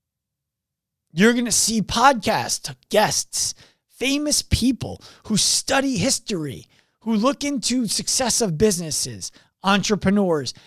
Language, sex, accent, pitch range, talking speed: English, male, American, 135-215 Hz, 100 wpm